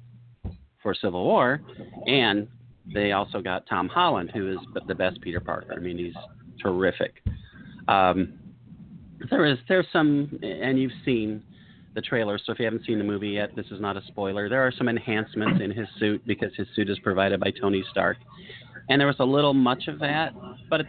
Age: 40-59